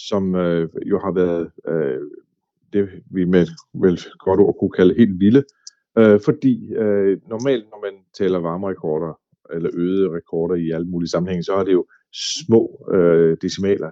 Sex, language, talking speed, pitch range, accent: male, Danish, 165 wpm, 90-115 Hz, native